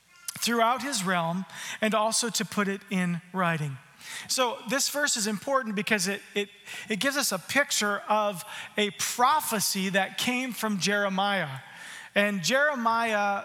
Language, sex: English, male